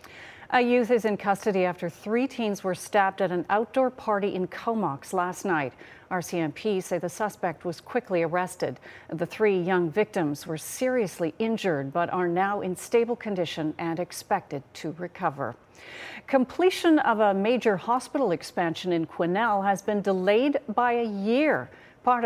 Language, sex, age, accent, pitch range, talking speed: English, female, 40-59, American, 175-235 Hz, 155 wpm